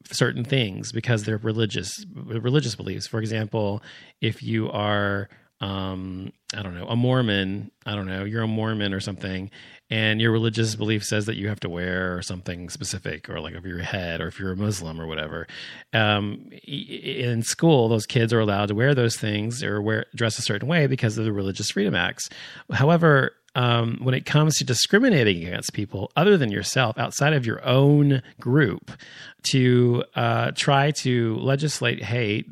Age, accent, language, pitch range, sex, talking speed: 30-49, American, English, 105-135 Hz, male, 175 wpm